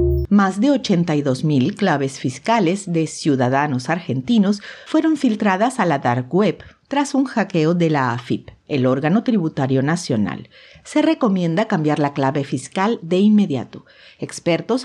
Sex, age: female, 50-69